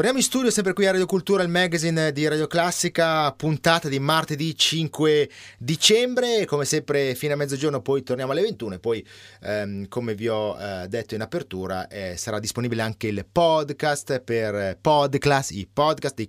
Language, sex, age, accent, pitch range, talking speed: Italian, male, 30-49, native, 110-155 Hz, 190 wpm